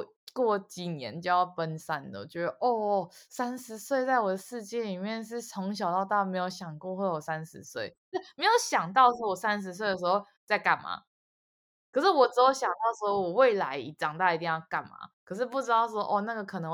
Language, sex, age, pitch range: Chinese, female, 20-39, 165-220 Hz